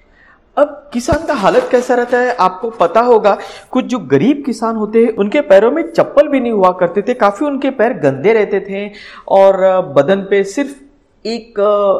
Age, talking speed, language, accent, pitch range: 40-59, 180 wpm, Hindi, native, 155-245 Hz